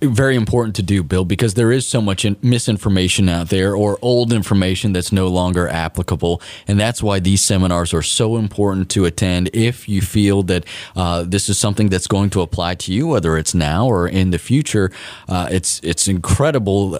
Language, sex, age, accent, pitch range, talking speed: English, male, 30-49, American, 90-115 Hz, 195 wpm